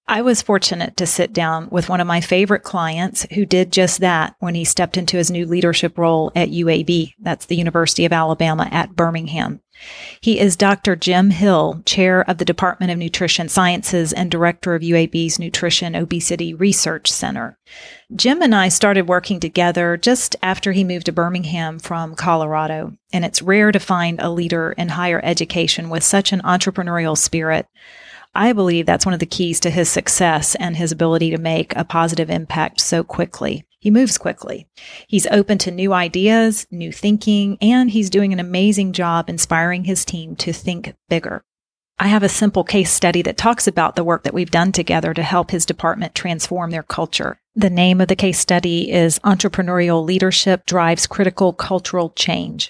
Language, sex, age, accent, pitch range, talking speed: English, female, 40-59, American, 170-195 Hz, 180 wpm